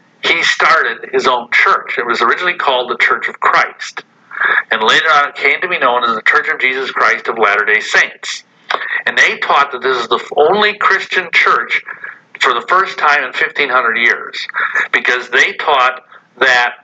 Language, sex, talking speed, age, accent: English, male, 180 wpm, 50-69, American